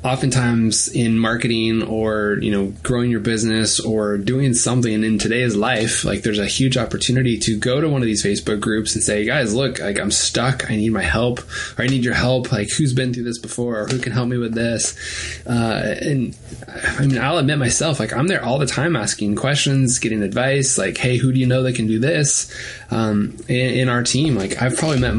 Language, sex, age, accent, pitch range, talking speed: English, male, 20-39, American, 110-130 Hz, 220 wpm